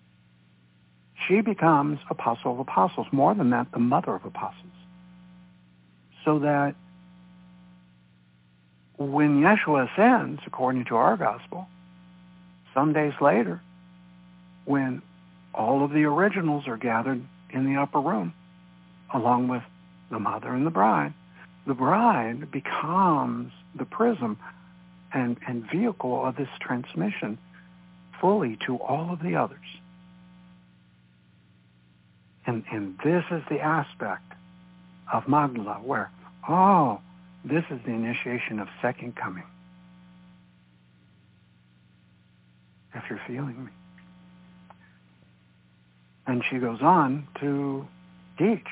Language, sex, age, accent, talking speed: English, male, 60-79, American, 105 wpm